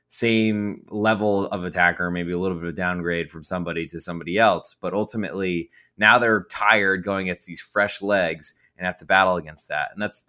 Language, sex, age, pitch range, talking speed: English, male, 20-39, 90-105 Hz, 185 wpm